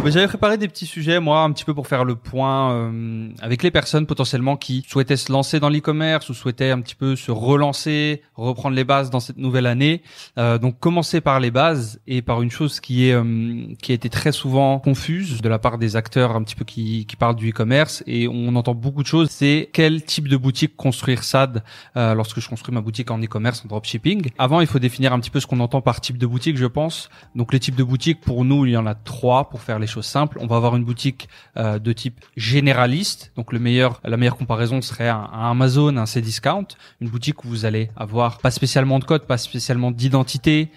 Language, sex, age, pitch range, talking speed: French, male, 20-39, 120-145 Hz, 235 wpm